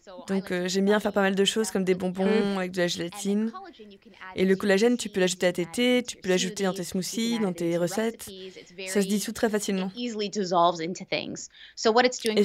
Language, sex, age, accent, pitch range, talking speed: French, female, 20-39, French, 185-220 Hz, 195 wpm